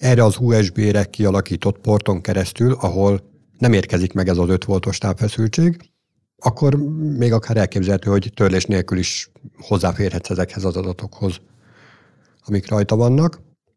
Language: Hungarian